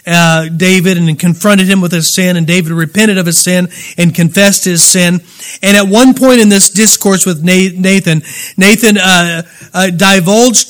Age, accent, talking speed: 40-59, American, 175 wpm